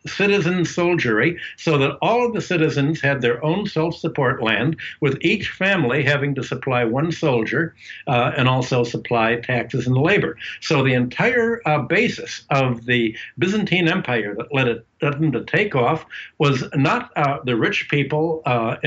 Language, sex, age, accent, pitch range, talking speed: English, male, 60-79, American, 120-155 Hz, 160 wpm